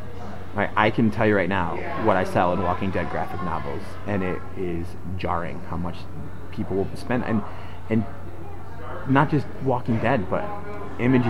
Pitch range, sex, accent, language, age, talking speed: 95-110 Hz, male, American, English, 30-49, 165 wpm